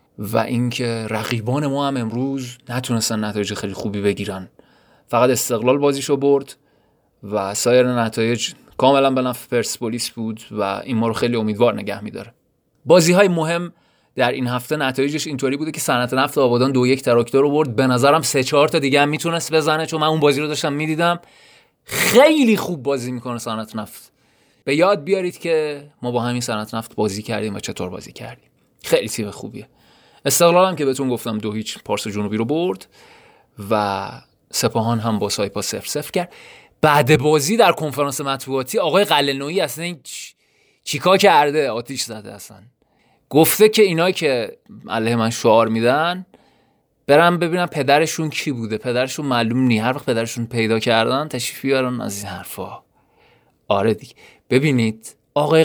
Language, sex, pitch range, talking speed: Persian, male, 115-150 Hz, 165 wpm